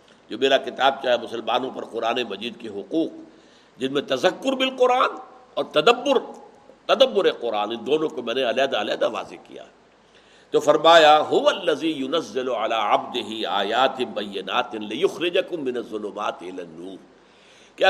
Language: Urdu